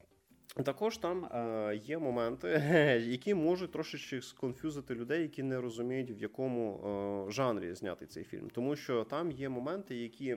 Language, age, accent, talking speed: Russian, 20-39, native, 140 wpm